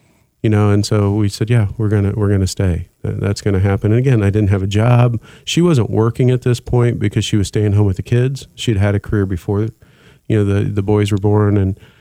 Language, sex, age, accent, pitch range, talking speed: English, male, 40-59, American, 100-110 Hz, 260 wpm